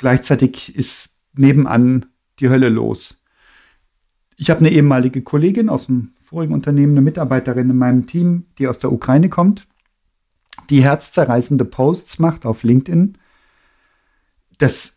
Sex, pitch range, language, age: male, 130-170 Hz, German, 50-69